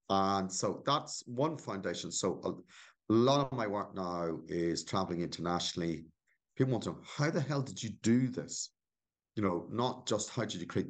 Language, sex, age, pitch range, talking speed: English, male, 50-69, 85-120 Hz, 185 wpm